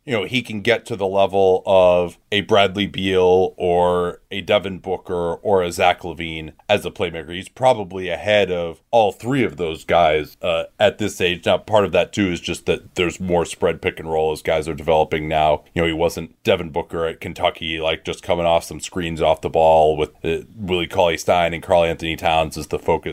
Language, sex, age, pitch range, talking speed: English, male, 30-49, 85-115 Hz, 220 wpm